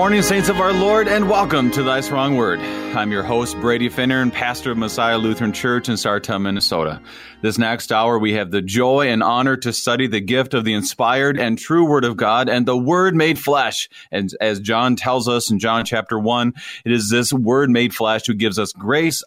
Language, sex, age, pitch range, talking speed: English, male, 30-49, 110-140 Hz, 225 wpm